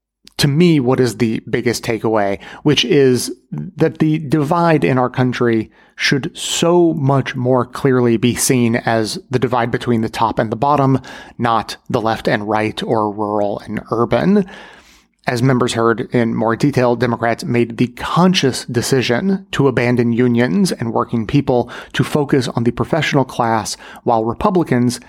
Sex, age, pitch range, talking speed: male, 30-49, 115-145 Hz, 155 wpm